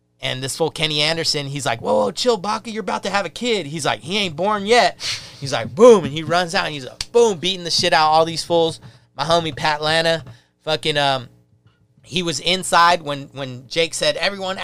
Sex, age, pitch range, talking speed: male, 30-49, 130-175 Hz, 230 wpm